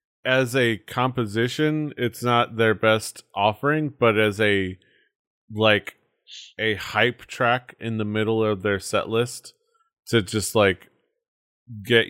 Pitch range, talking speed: 90-115 Hz, 130 wpm